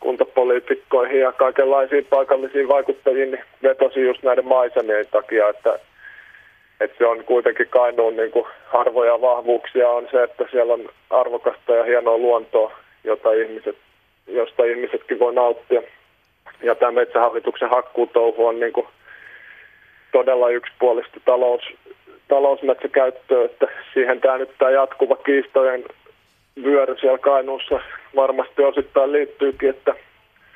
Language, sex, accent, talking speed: Finnish, male, native, 110 wpm